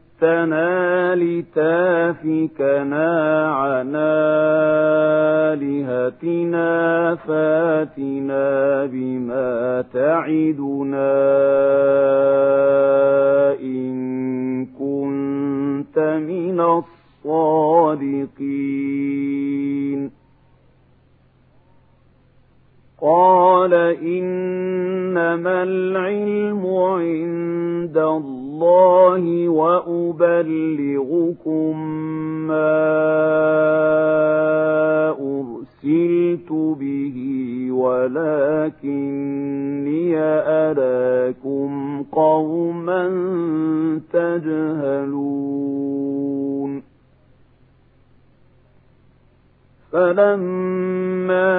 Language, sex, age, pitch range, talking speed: Arabic, male, 50-69, 140-170 Hz, 30 wpm